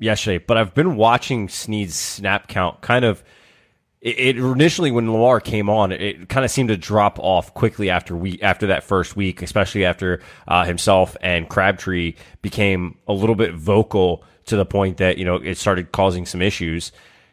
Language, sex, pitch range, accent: English, male, 95-115 Hz, American